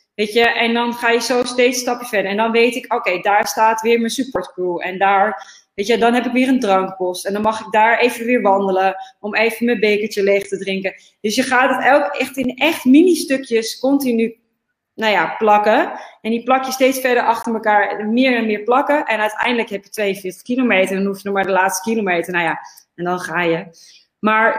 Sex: female